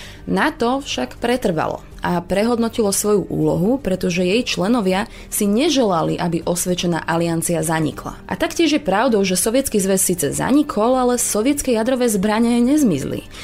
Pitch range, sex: 175-230 Hz, female